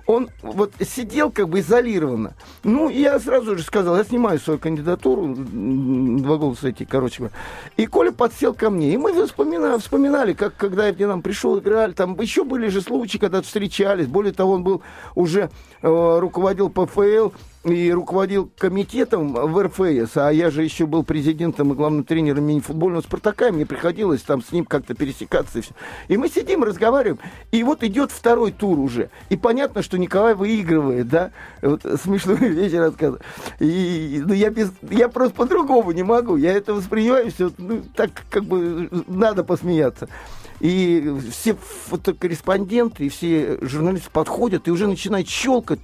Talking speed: 160 wpm